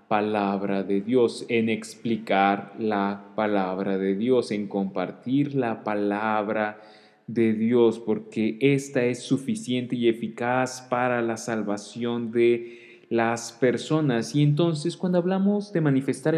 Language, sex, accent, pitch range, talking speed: Spanish, male, Mexican, 110-135 Hz, 120 wpm